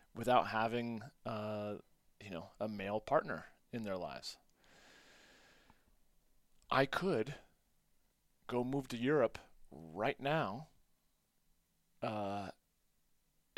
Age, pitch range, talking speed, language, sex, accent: 30-49, 105-140 Hz, 90 wpm, English, male, American